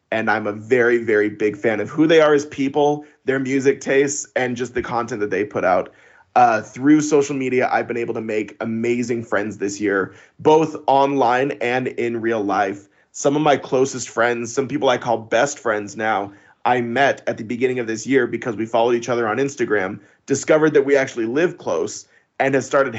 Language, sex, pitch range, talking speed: English, male, 115-145 Hz, 205 wpm